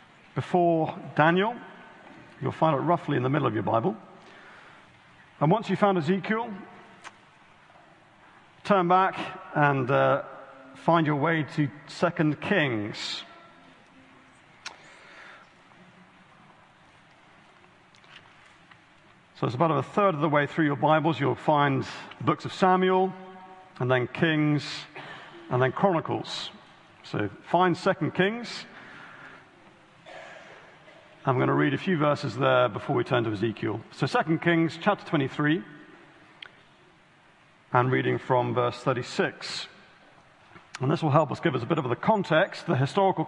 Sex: male